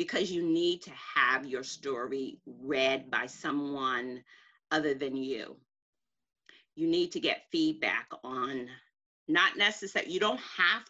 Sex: female